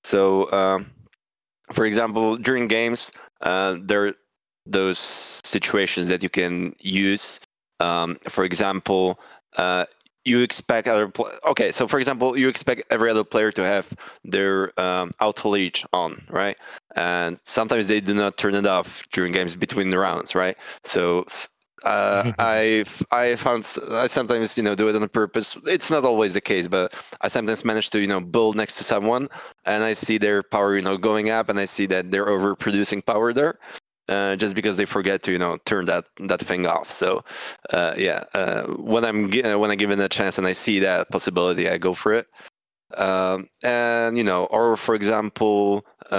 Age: 20-39